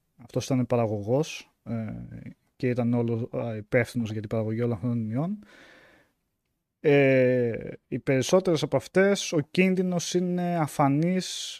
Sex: male